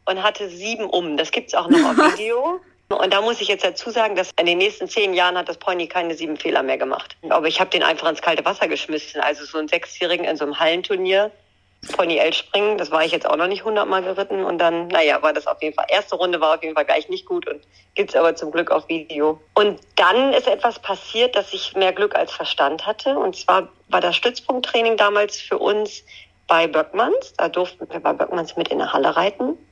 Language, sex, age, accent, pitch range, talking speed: German, female, 40-59, German, 170-245 Hz, 235 wpm